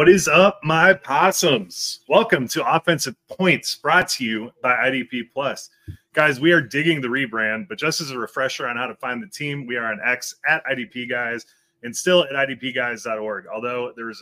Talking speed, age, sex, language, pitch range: 190 wpm, 30-49, male, English, 125-170 Hz